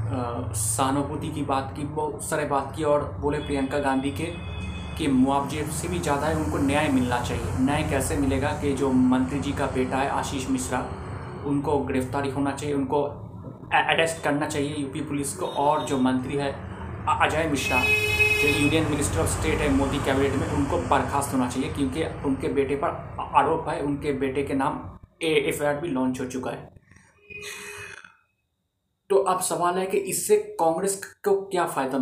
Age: 30-49